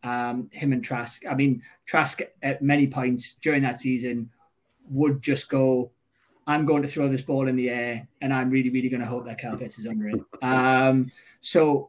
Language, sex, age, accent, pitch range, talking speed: English, male, 20-39, British, 130-145 Hz, 200 wpm